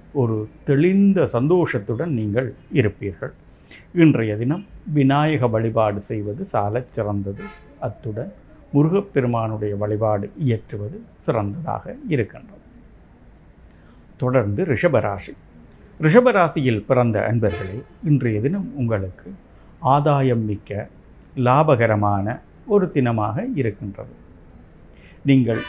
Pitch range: 105-145 Hz